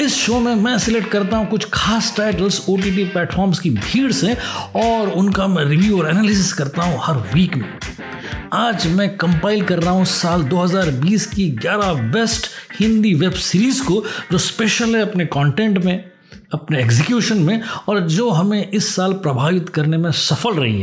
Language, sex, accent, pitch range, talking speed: Hindi, male, native, 175-215 Hz, 175 wpm